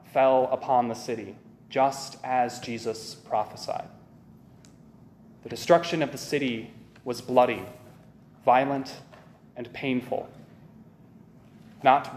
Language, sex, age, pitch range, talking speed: English, male, 20-39, 125-160 Hz, 95 wpm